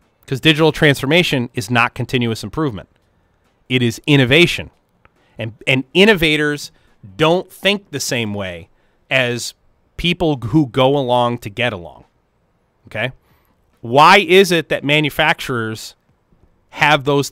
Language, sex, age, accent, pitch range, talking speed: English, male, 30-49, American, 110-150 Hz, 115 wpm